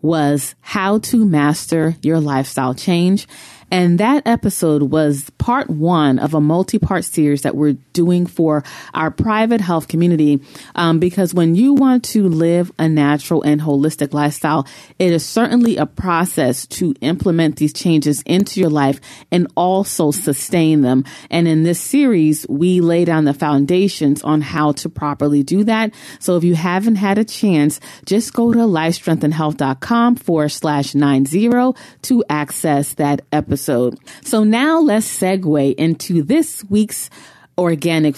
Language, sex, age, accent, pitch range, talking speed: English, female, 30-49, American, 150-195 Hz, 150 wpm